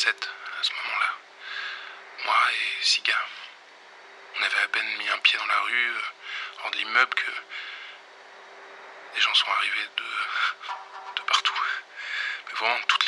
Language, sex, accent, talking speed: French, male, French, 140 wpm